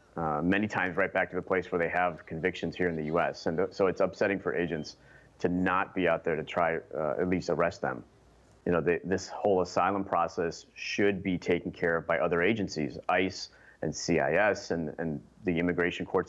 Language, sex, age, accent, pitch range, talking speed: English, male, 30-49, American, 90-100 Hz, 210 wpm